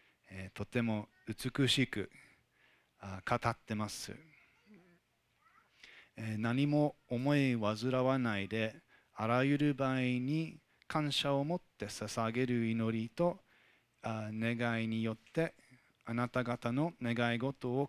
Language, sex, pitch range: Japanese, male, 115-135 Hz